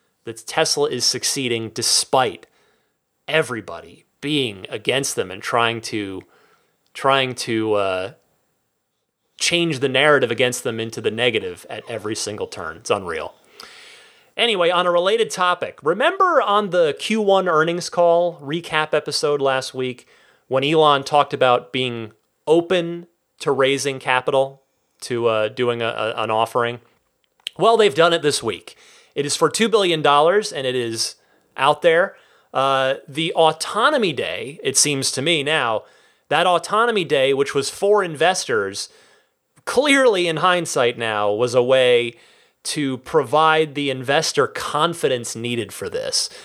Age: 30-49